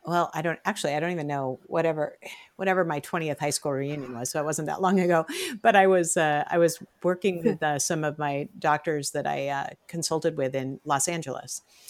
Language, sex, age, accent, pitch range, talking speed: English, female, 50-69, American, 165-265 Hz, 215 wpm